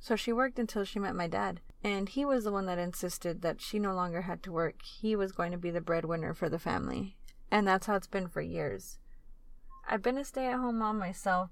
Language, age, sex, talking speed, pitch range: English, 30-49, female, 235 wpm, 180-220 Hz